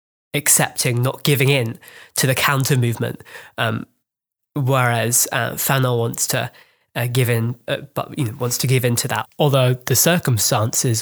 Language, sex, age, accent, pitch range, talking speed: English, male, 20-39, British, 125-145 Hz, 165 wpm